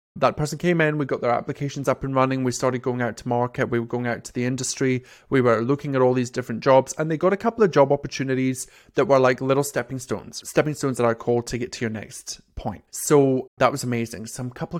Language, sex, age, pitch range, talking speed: English, male, 30-49, 120-145 Hz, 255 wpm